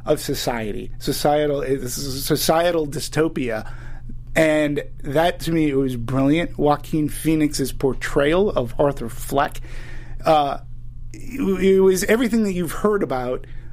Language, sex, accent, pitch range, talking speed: English, male, American, 125-165 Hz, 115 wpm